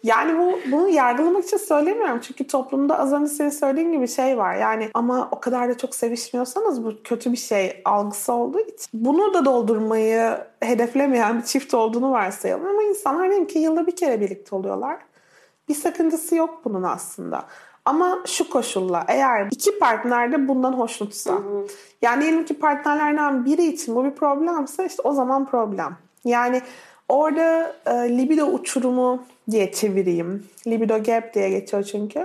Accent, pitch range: native, 235-320 Hz